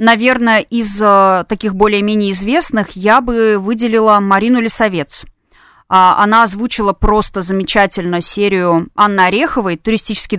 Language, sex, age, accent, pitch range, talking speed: Russian, female, 20-39, native, 185-230 Hz, 105 wpm